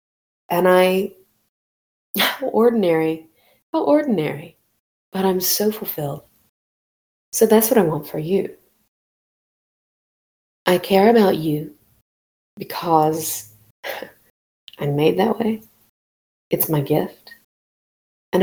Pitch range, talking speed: 160-200 Hz, 100 wpm